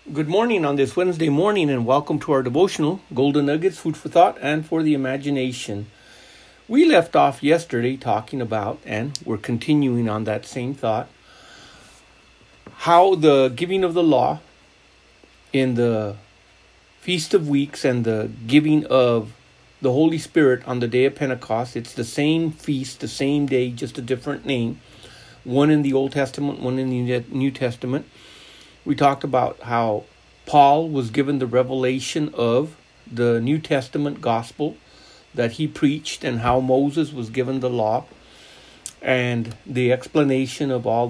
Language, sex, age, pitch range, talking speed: English, male, 50-69, 120-150 Hz, 155 wpm